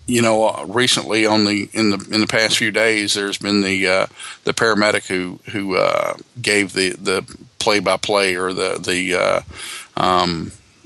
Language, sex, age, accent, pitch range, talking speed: English, male, 50-69, American, 100-110 Hz, 175 wpm